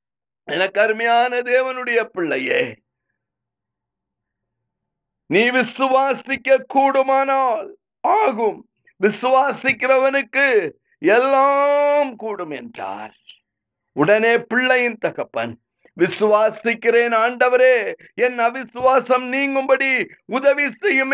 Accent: native